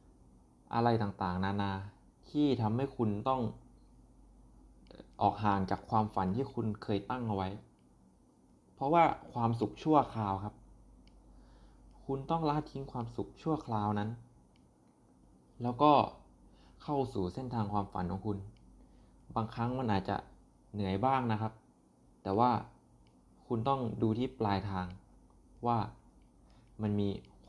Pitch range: 85-120 Hz